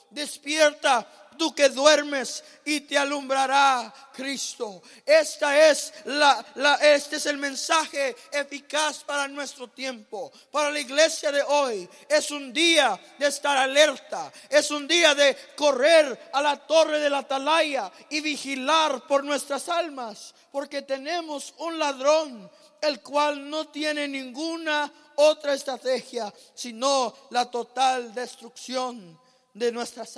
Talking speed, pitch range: 120 wpm, 255-295 Hz